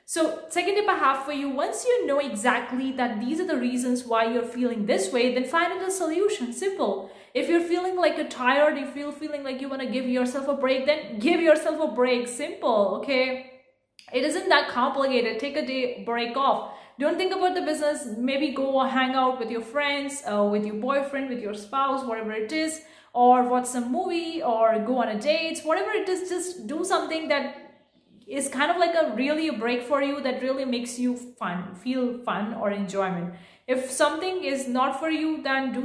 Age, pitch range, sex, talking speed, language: 30-49, 245-300 Hz, female, 210 wpm, English